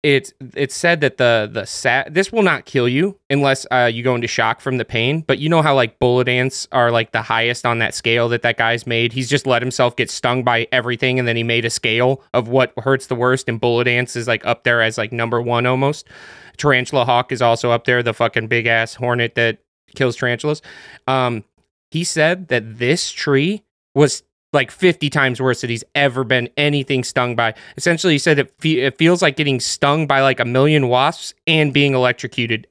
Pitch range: 120-145 Hz